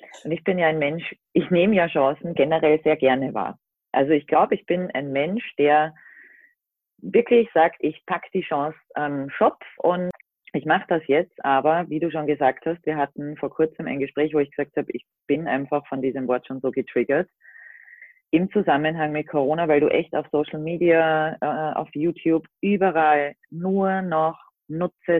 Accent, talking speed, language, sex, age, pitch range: German, 180 wpm, German, female, 30-49, 145-180 Hz